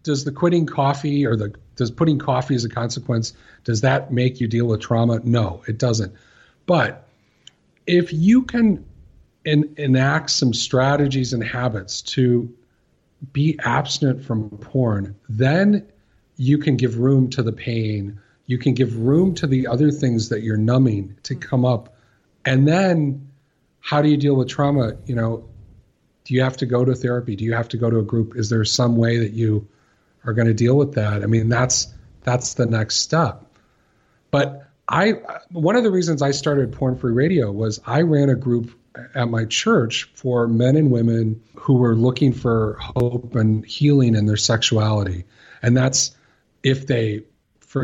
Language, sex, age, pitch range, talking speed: English, male, 40-59, 110-135 Hz, 175 wpm